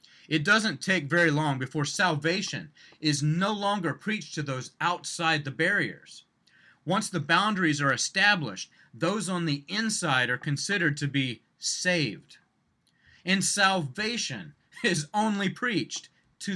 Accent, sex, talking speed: American, male, 130 wpm